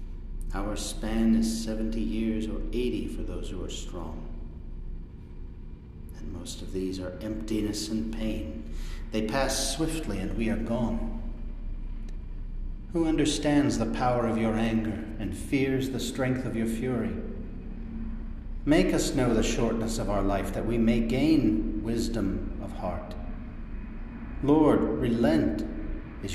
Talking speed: 135 wpm